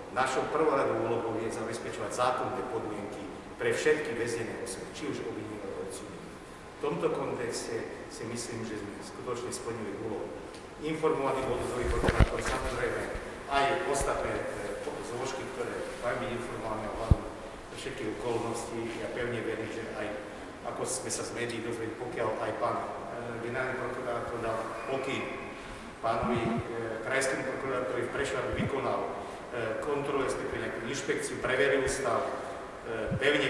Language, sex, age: Slovak, male, 50-69